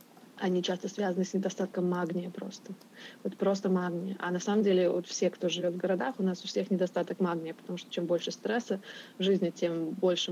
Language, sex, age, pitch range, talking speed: Russian, female, 20-39, 175-205 Hz, 205 wpm